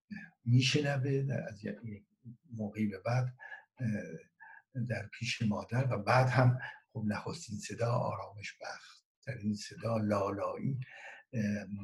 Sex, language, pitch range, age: male, Persian, 105-125 Hz, 60-79